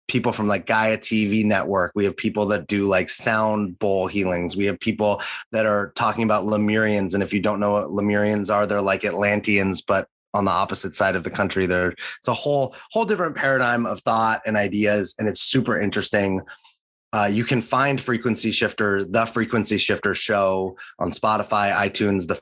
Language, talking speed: English, 190 wpm